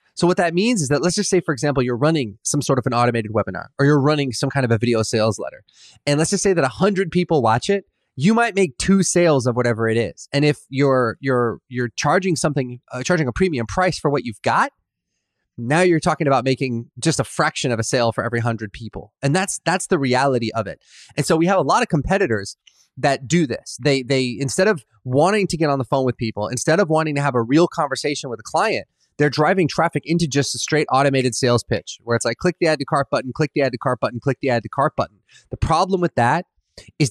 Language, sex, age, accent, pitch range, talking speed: English, male, 30-49, American, 120-160 Hz, 250 wpm